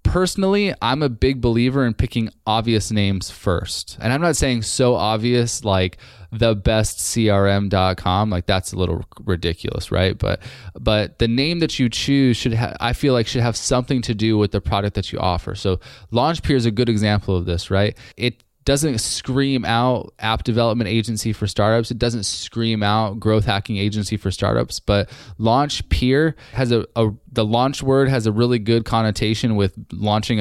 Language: English